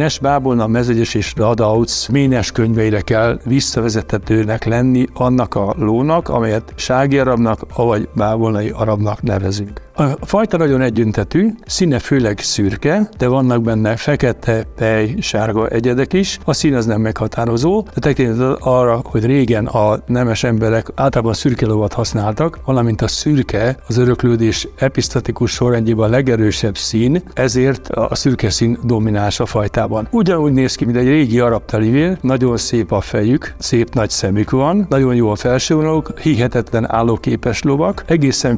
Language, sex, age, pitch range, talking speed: Hungarian, male, 60-79, 110-130 Hz, 145 wpm